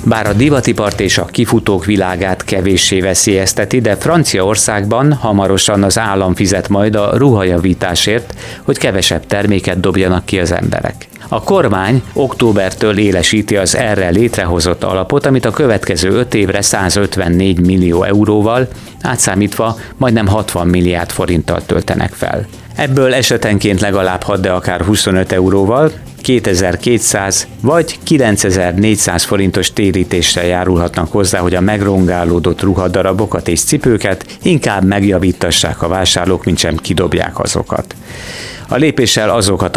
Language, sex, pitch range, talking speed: Hungarian, male, 90-110 Hz, 120 wpm